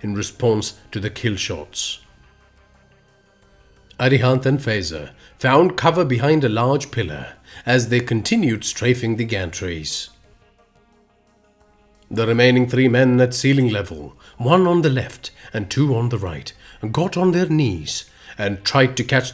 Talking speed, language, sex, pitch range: 140 wpm, English, male, 95-135 Hz